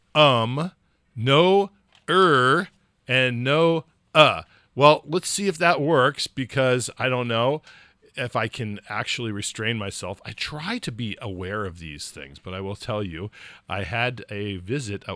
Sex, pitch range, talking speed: male, 95-125 Hz, 155 wpm